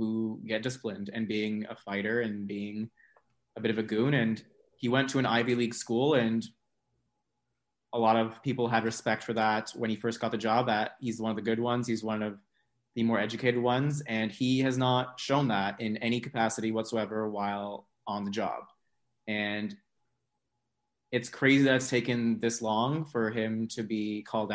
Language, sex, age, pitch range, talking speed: English, male, 20-39, 110-125 Hz, 190 wpm